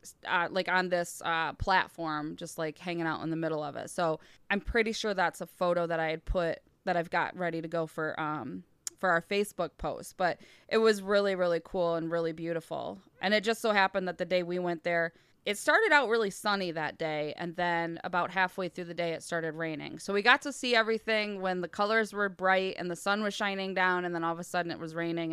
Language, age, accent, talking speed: English, 20-39, American, 240 wpm